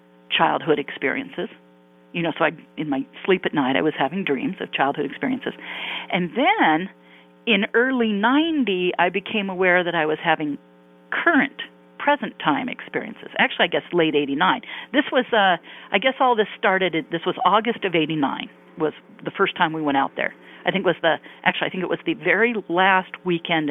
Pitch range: 140-195 Hz